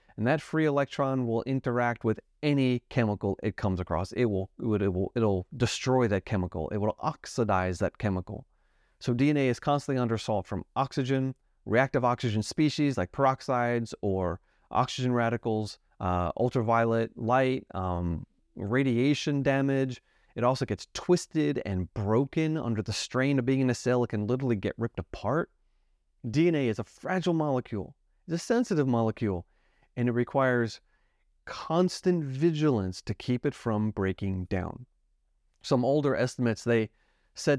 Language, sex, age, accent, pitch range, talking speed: English, male, 30-49, American, 100-135 Hz, 150 wpm